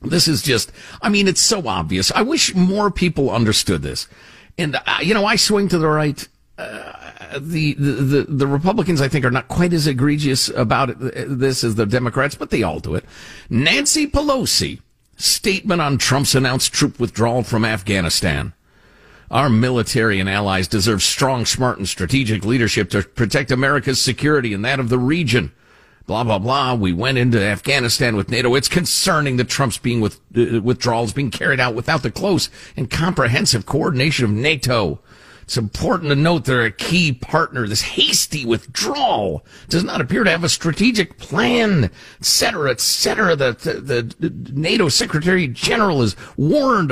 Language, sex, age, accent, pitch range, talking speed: English, male, 50-69, American, 115-175 Hz, 170 wpm